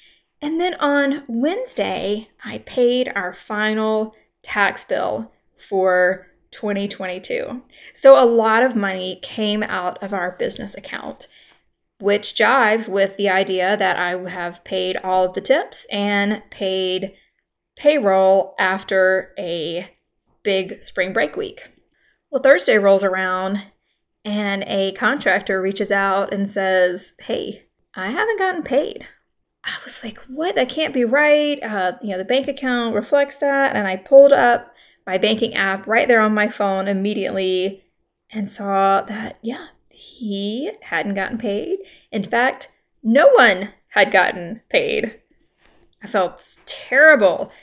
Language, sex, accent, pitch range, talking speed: English, female, American, 190-255 Hz, 135 wpm